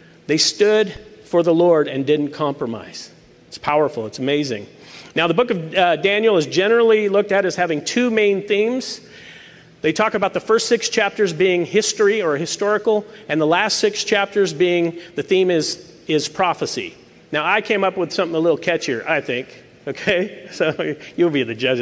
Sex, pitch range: male, 165-215 Hz